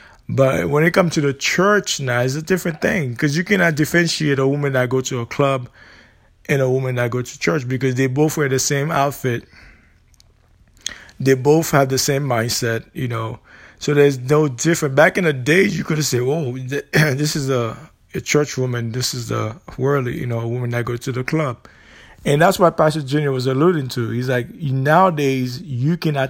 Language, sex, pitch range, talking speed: English, male, 125-155 Hz, 205 wpm